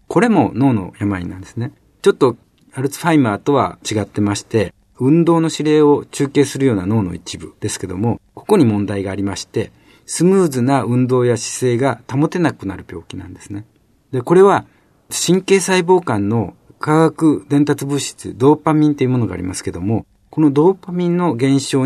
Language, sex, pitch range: Japanese, male, 105-150 Hz